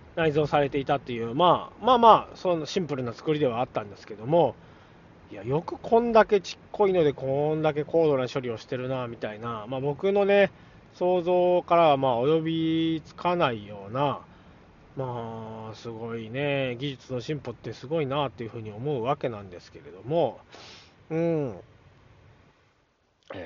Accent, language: native, Japanese